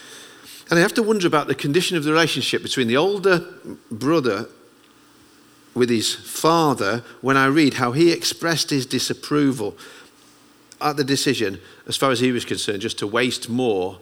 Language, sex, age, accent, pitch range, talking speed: English, male, 50-69, British, 120-180 Hz, 165 wpm